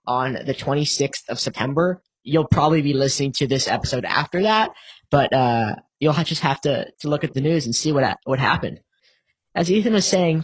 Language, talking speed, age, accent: English, 195 wpm, 10-29, American